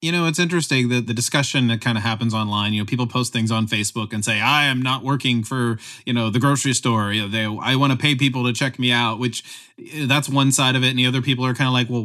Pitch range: 120-150 Hz